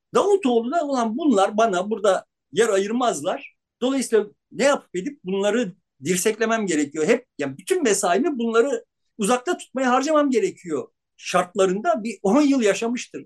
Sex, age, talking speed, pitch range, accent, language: male, 50-69, 130 wpm, 195-280 Hz, native, Turkish